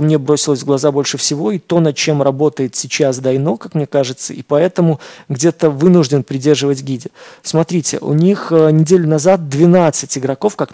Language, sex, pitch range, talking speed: Russian, male, 140-165 Hz, 175 wpm